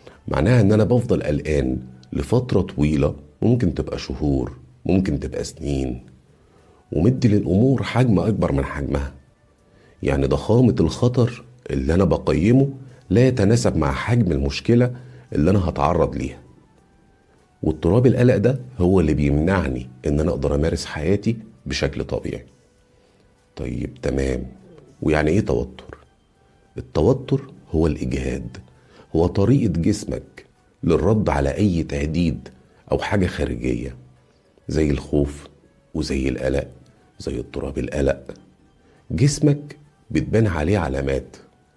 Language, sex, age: Arabic, male, 50-69